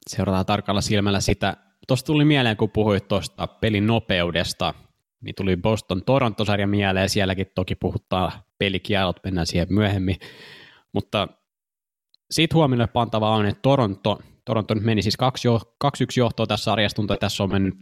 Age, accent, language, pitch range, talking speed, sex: 20-39, native, Finnish, 90-105 Hz, 160 wpm, male